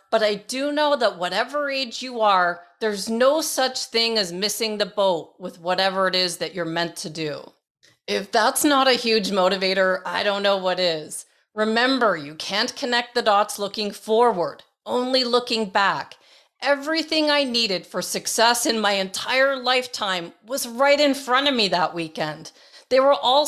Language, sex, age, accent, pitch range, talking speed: English, female, 40-59, American, 195-255 Hz, 175 wpm